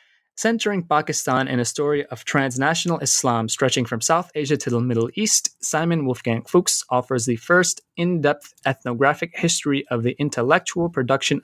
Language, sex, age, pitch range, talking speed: English, male, 20-39, 125-155 Hz, 150 wpm